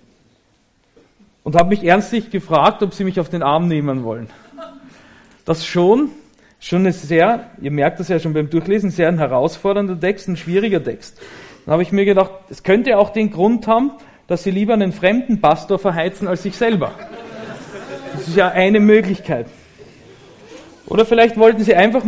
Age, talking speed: 40-59, 170 wpm